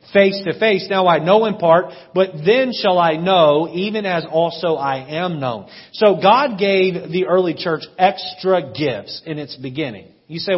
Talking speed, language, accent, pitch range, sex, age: 180 wpm, English, American, 165-240 Hz, male, 40-59